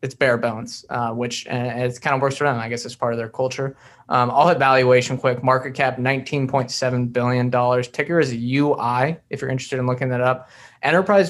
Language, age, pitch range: English, 20-39, 125-145 Hz